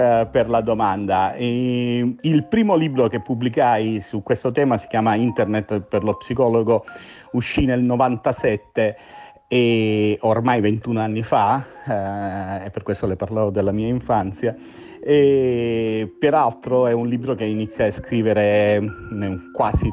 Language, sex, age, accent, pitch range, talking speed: Italian, male, 40-59, native, 105-130 Hz, 130 wpm